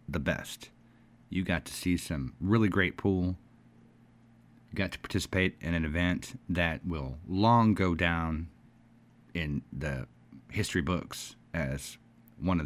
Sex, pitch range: male, 85-115 Hz